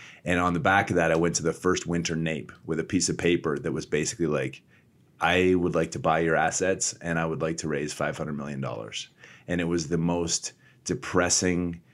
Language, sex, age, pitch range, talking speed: English, male, 30-49, 80-95 Hz, 215 wpm